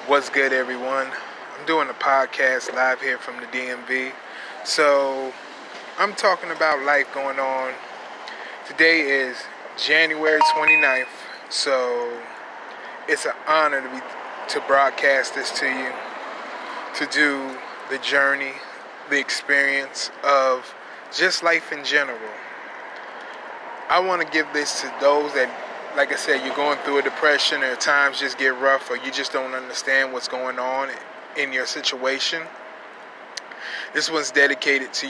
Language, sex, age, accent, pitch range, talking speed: English, male, 20-39, American, 130-145 Hz, 135 wpm